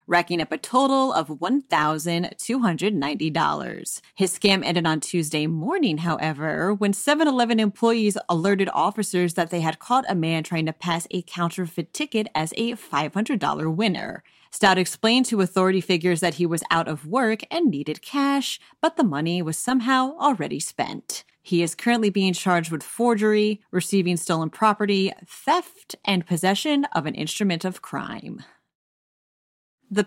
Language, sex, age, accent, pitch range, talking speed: English, female, 30-49, American, 170-235 Hz, 150 wpm